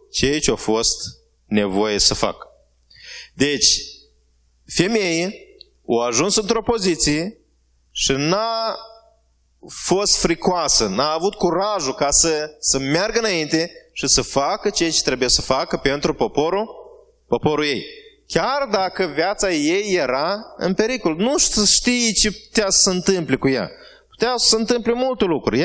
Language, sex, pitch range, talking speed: Romanian, male, 160-225 Hz, 140 wpm